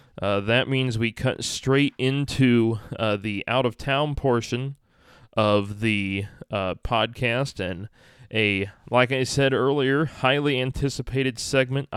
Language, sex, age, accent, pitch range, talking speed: English, male, 20-39, American, 110-135 Hz, 120 wpm